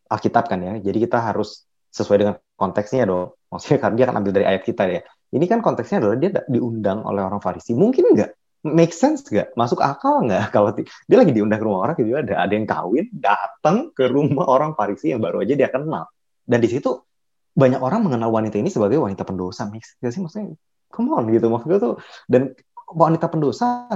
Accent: native